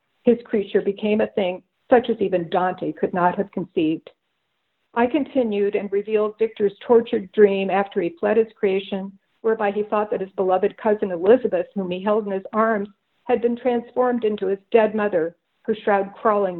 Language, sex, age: English, female, 50-69